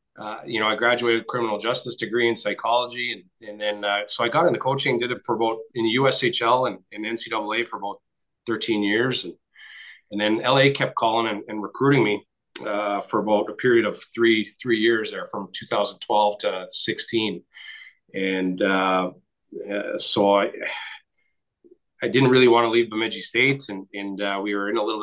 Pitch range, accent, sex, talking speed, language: 105-120 Hz, American, male, 185 wpm, English